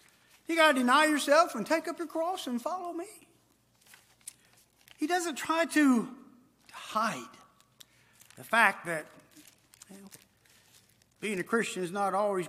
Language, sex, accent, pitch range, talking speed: English, male, American, 175-295 Hz, 140 wpm